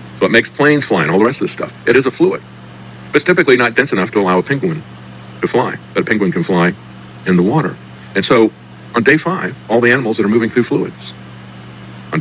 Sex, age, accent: male, 50-69, American